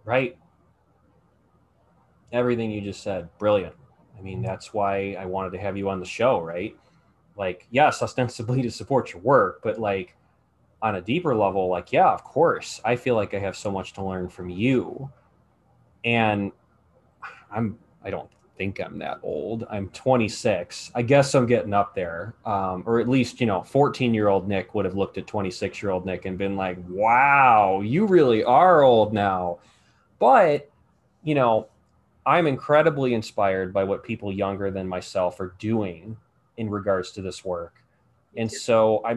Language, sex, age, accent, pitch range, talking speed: English, male, 20-39, American, 95-120 Hz, 175 wpm